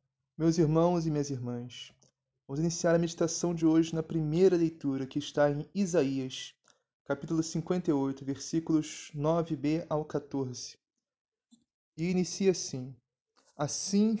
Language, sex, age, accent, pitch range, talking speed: Portuguese, male, 20-39, Brazilian, 140-175 Hz, 120 wpm